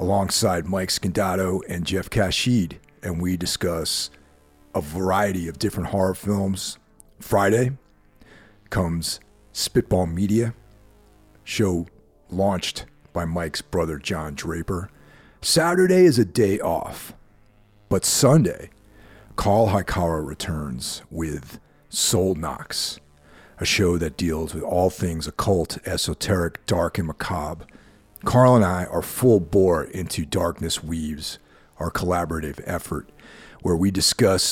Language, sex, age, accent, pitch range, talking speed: English, male, 40-59, American, 80-105 Hz, 115 wpm